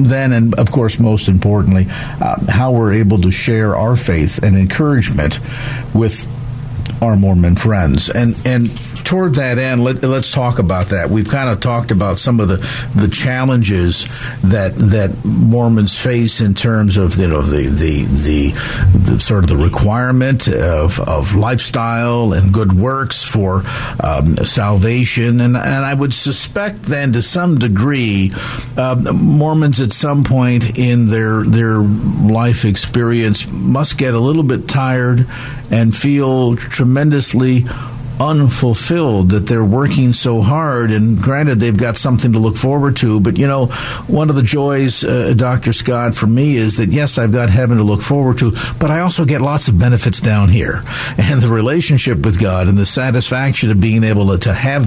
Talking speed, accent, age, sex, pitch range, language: 170 wpm, American, 50-69, male, 105-135 Hz, English